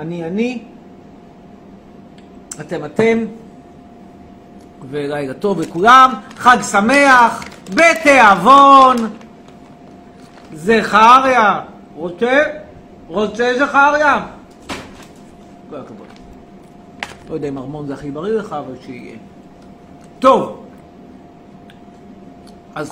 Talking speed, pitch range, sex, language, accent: 70 wpm, 225-280 Hz, male, Hebrew, native